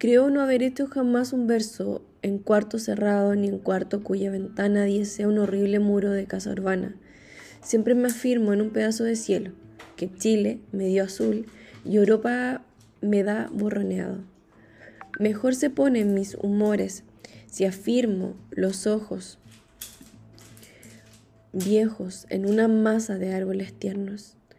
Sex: female